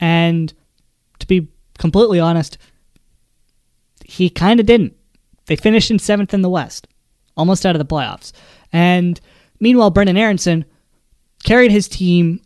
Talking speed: 135 wpm